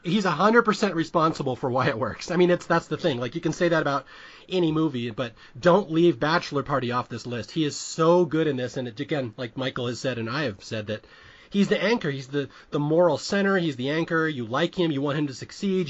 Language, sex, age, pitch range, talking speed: English, male, 30-49, 125-175 Hz, 250 wpm